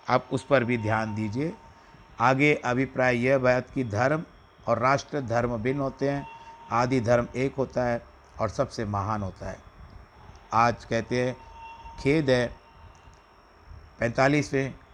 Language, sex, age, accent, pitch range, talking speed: Hindi, male, 60-79, native, 120-155 Hz, 135 wpm